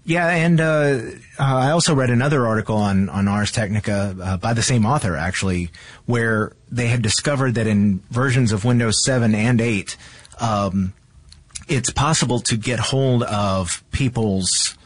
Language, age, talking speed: English, 30-49, 155 wpm